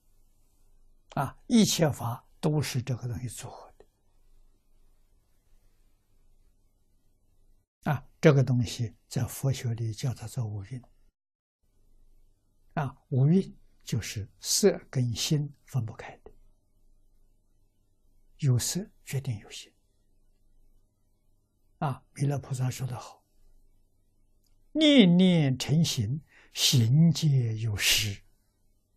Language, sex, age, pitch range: Chinese, male, 60-79, 100-130 Hz